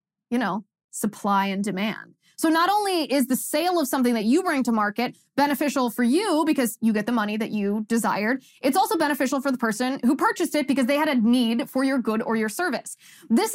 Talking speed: 220 wpm